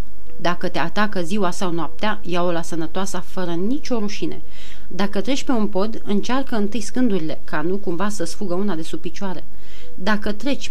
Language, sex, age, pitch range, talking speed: Romanian, female, 30-49, 175-215 Hz, 170 wpm